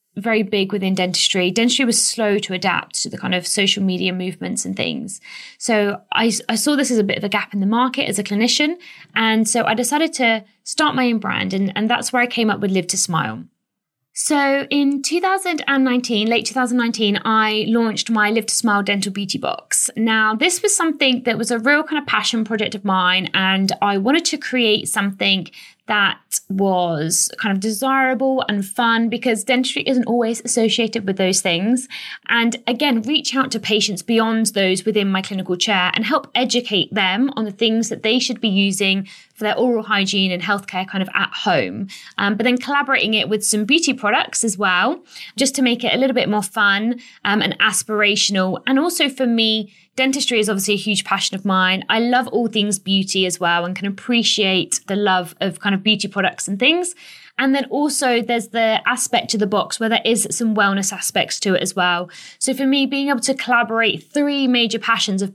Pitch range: 195-245 Hz